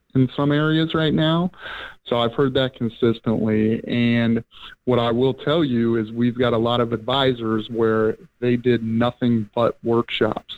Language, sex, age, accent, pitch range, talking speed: English, male, 30-49, American, 115-125 Hz, 165 wpm